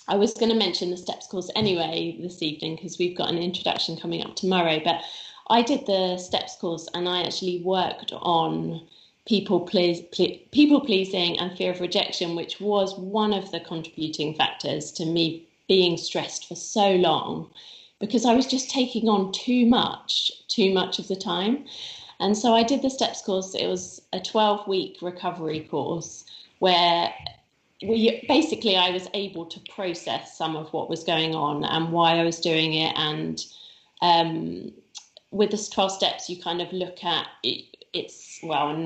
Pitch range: 165-200 Hz